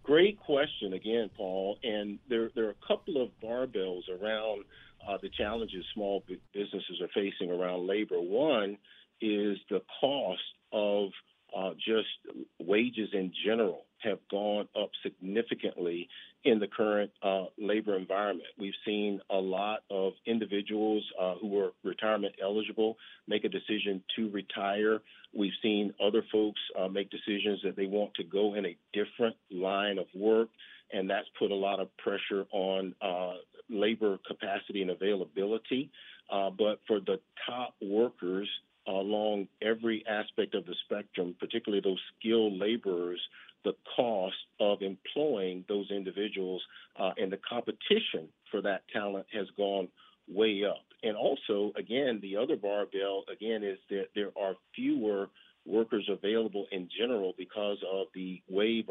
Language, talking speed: English, 145 wpm